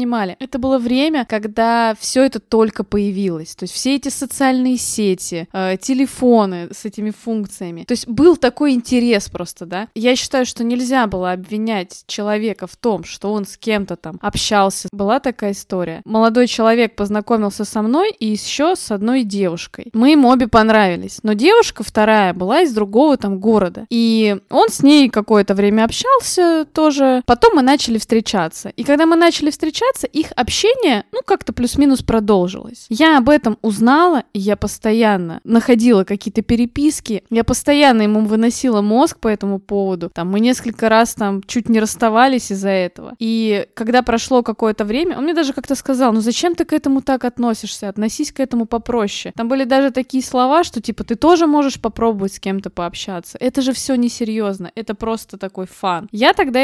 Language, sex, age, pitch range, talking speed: Russian, female, 20-39, 210-265 Hz, 170 wpm